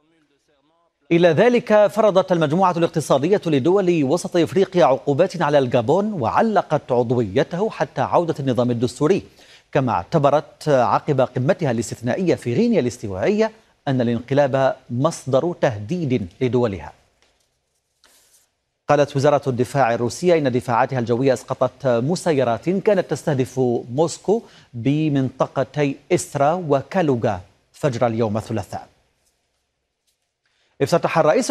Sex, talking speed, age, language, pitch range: male, 95 wpm, 40-59, Arabic, 120-160 Hz